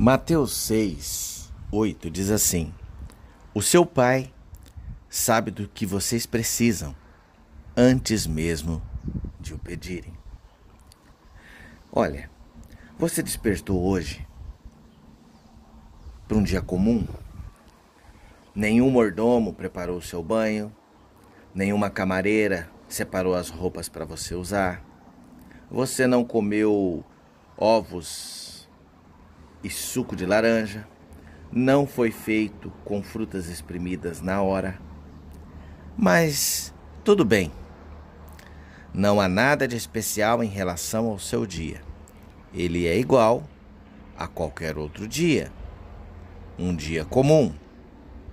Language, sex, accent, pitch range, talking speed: Portuguese, male, Brazilian, 80-110 Hz, 100 wpm